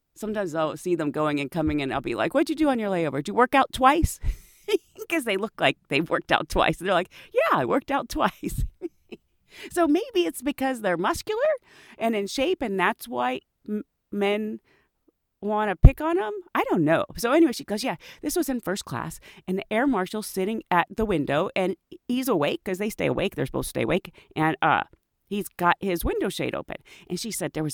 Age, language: 40-59, English